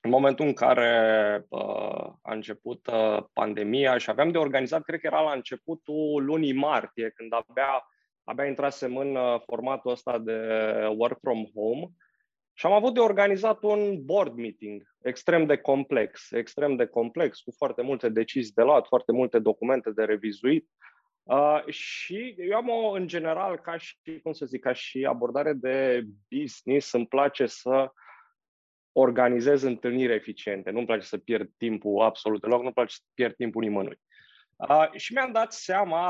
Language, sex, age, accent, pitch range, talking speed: Romanian, male, 20-39, native, 120-155 Hz, 155 wpm